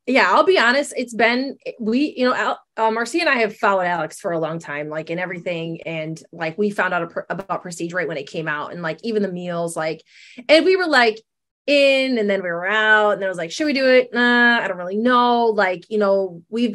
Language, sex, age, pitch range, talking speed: English, female, 20-39, 190-245 Hz, 245 wpm